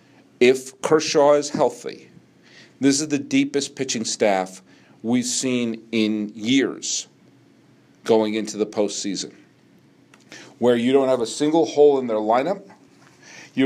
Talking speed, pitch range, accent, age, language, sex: 125 wpm, 125-175 Hz, American, 50-69, English, male